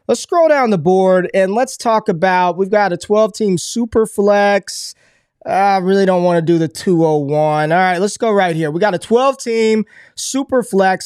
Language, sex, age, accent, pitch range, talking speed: English, male, 20-39, American, 175-210 Hz, 200 wpm